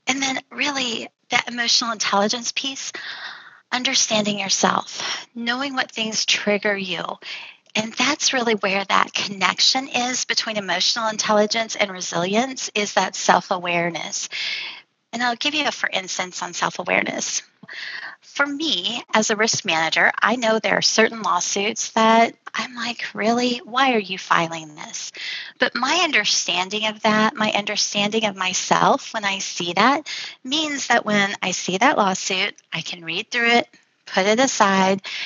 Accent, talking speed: American, 150 wpm